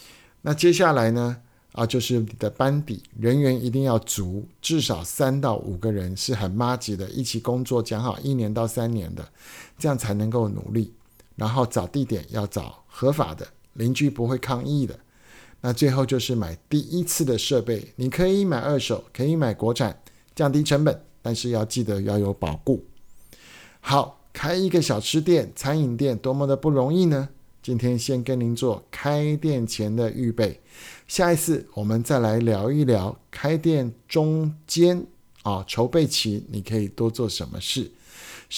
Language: Chinese